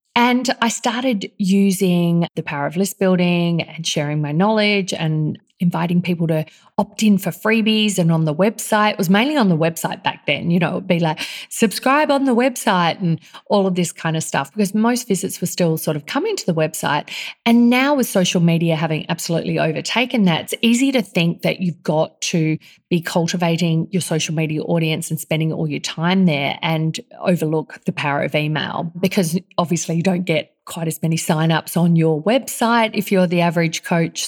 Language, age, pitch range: English, 30-49, 165-215 Hz